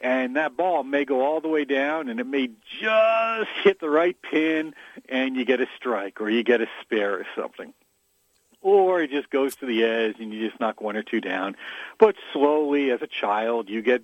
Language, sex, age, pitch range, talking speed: English, male, 50-69, 105-155 Hz, 220 wpm